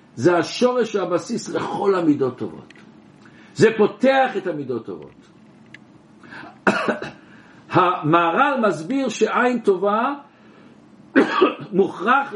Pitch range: 170-245 Hz